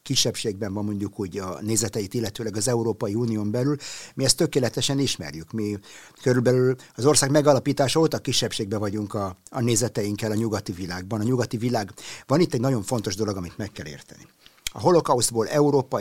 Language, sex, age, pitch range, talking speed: Hungarian, male, 50-69, 110-145 Hz, 170 wpm